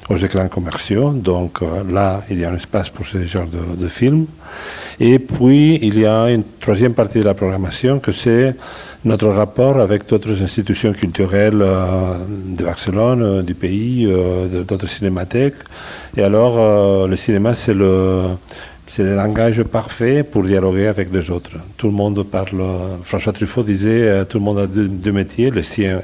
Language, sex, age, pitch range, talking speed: French, male, 40-59, 95-110 Hz, 180 wpm